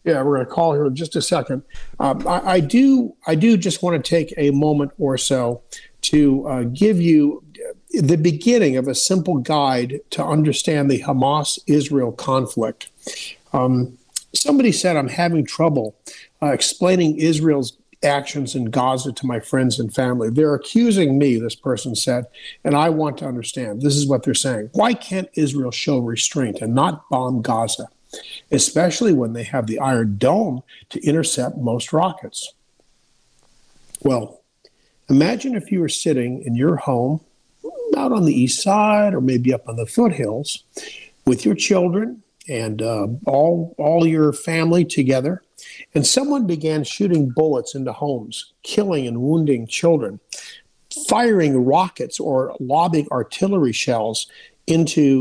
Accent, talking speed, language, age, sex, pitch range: American, 150 wpm, English, 50-69, male, 125-170 Hz